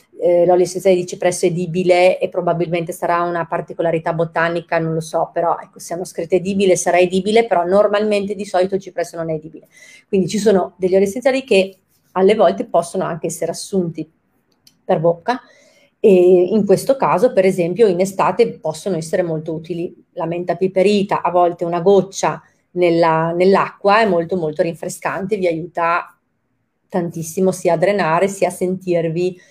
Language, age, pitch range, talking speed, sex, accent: Italian, 30-49, 170-200 Hz, 160 wpm, female, native